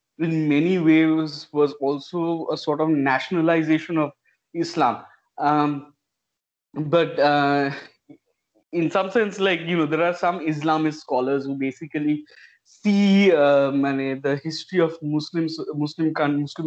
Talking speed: 120 wpm